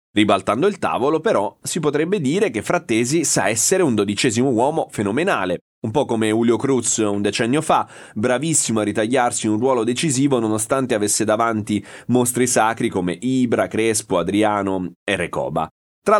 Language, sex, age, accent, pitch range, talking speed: Italian, male, 30-49, native, 95-125 Hz, 155 wpm